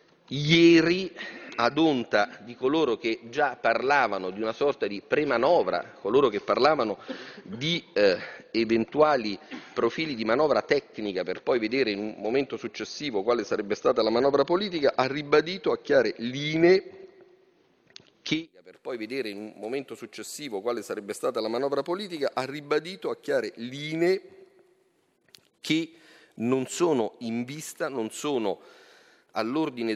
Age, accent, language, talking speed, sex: 40-59, native, Italian, 110 wpm, male